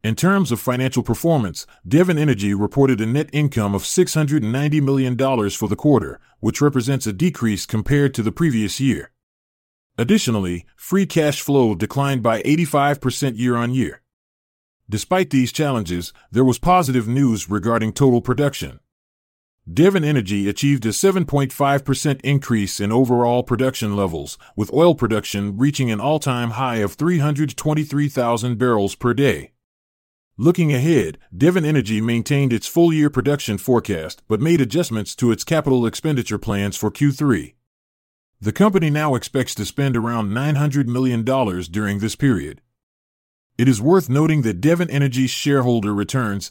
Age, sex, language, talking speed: 30-49, male, English, 135 wpm